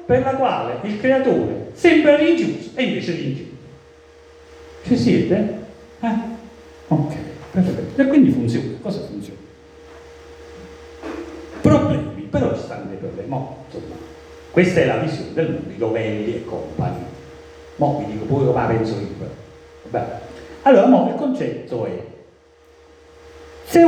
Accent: native